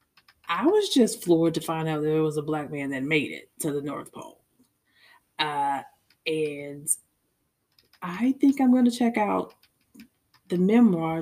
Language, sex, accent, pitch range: English, female, American, 155-185 Hz